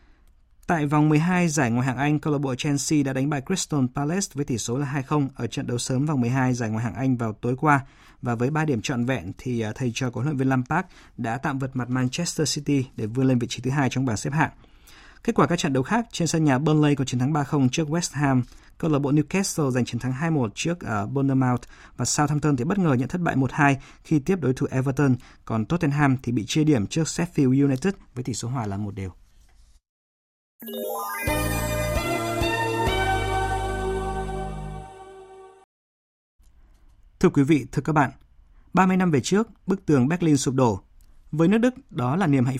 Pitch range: 125-155 Hz